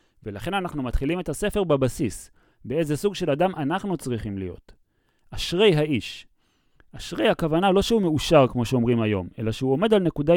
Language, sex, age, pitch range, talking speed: Hebrew, male, 30-49, 130-185 Hz, 160 wpm